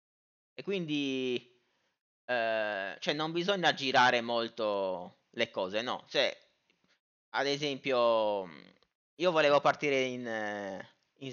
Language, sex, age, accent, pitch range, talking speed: Italian, male, 30-49, native, 120-190 Hz, 100 wpm